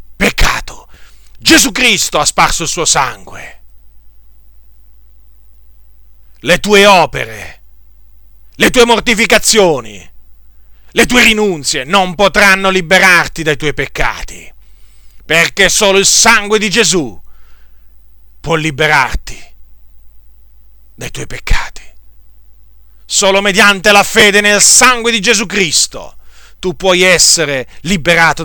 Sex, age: male, 40-59